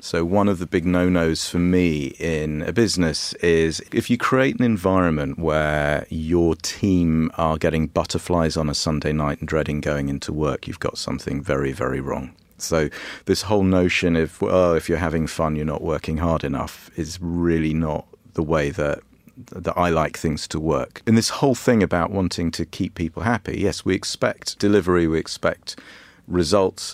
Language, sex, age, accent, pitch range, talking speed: English, male, 40-59, British, 80-95 Hz, 185 wpm